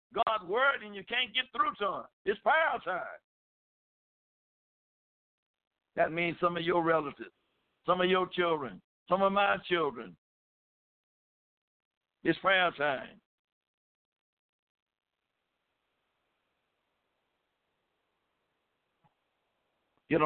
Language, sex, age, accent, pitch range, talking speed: English, male, 60-79, American, 155-210 Hz, 85 wpm